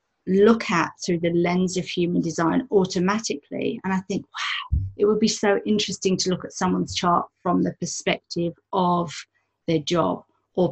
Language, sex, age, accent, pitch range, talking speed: English, female, 40-59, British, 175-210 Hz, 170 wpm